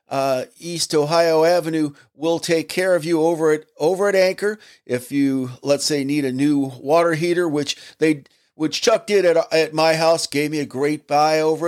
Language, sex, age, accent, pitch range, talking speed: English, male, 50-69, American, 130-170 Hz, 195 wpm